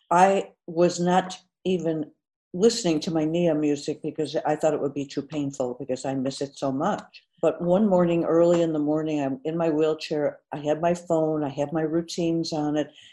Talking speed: 200 wpm